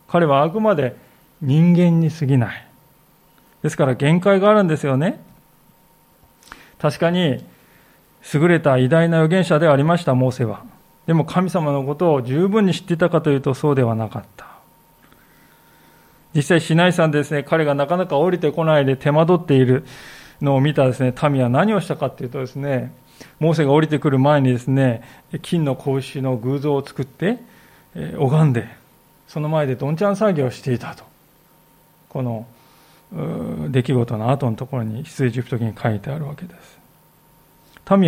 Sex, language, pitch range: male, Japanese, 130-170 Hz